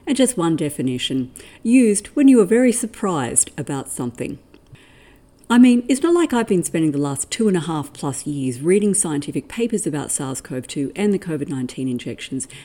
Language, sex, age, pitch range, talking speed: English, female, 50-69, 145-190 Hz, 175 wpm